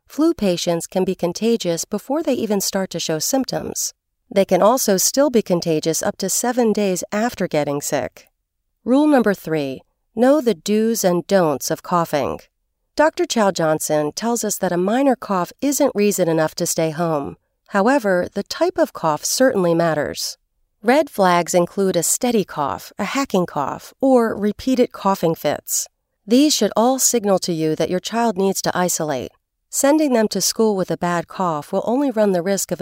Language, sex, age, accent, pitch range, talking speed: English, female, 40-59, American, 170-235 Hz, 175 wpm